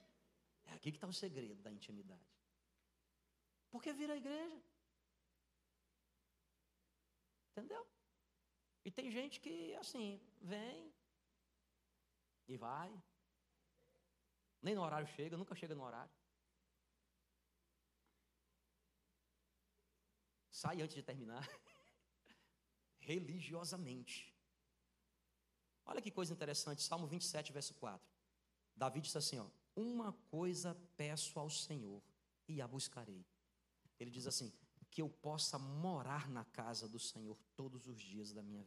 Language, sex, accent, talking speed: Portuguese, male, Brazilian, 105 wpm